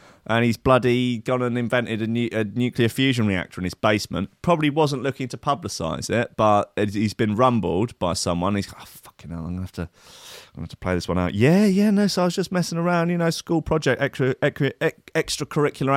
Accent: British